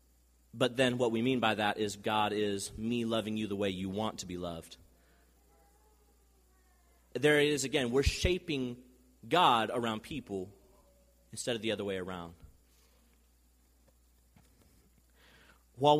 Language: English